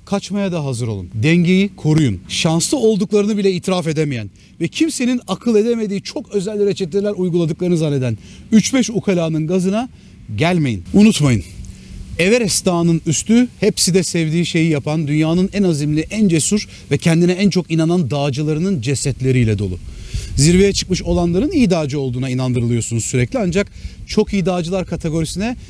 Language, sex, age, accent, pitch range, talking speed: Turkish, male, 40-59, native, 145-205 Hz, 135 wpm